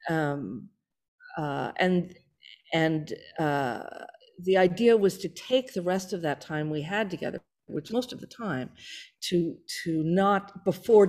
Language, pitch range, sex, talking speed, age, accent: English, 145-200 Hz, female, 145 wpm, 50-69, American